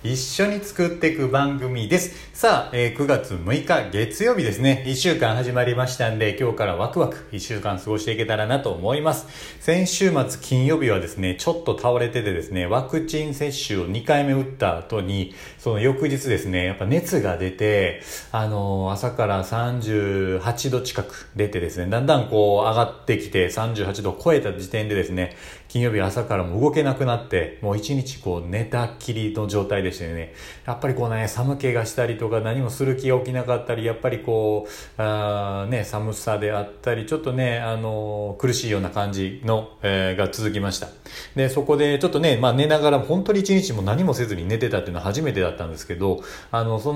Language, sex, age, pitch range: Japanese, male, 40-59, 105-135 Hz